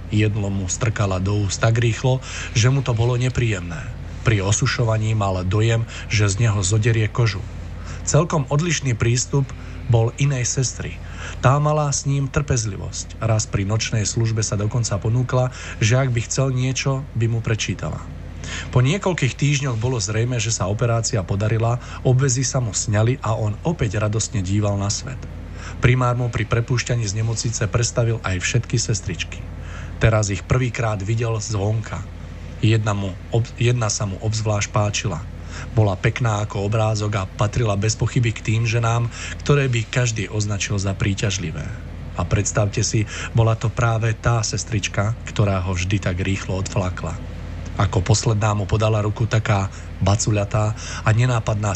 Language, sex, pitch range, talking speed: Slovak, male, 95-120 Hz, 150 wpm